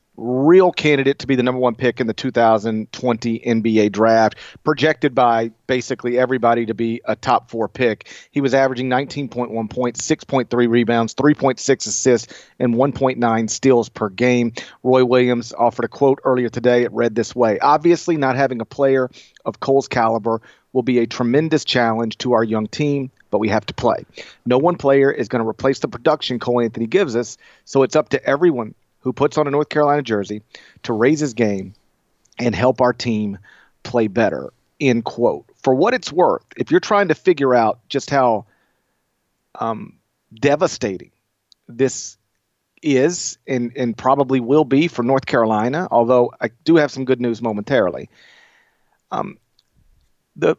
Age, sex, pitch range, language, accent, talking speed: 40-59, male, 115-145 Hz, English, American, 165 wpm